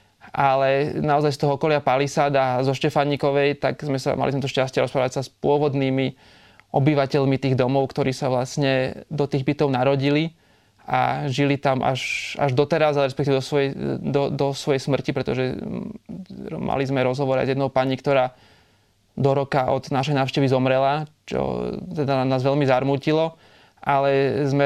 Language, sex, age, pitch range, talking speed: Slovak, male, 20-39, 130-145 Hz, 155 wpm